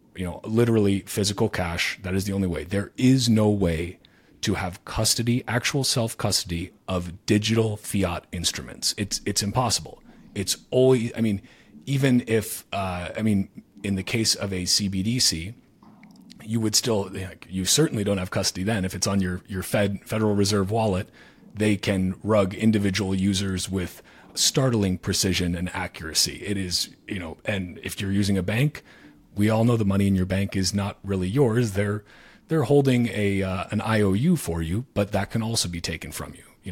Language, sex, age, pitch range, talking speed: English, male, 30-49, 90-110 Hz, 180 wpm